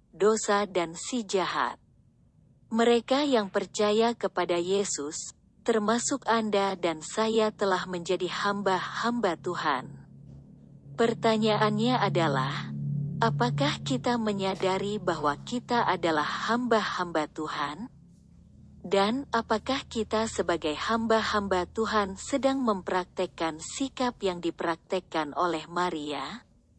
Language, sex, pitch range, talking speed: Indonesian, female, 180-225 Hz, 90 wpm